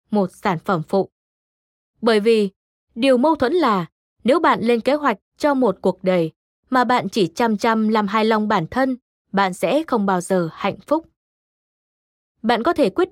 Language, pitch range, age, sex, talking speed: Vietnamese, 195-255 Hz, 20-39, female, 185 wpm